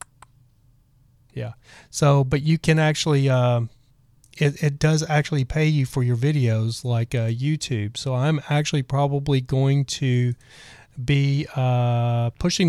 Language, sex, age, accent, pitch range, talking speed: English, male, 30-49, American, 120-145 Hz, 130 wpm